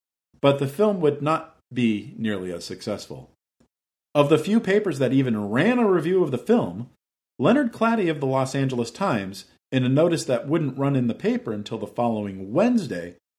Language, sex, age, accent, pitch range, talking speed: English, male, 50-69, American, 115-185 Hz, 185 wpm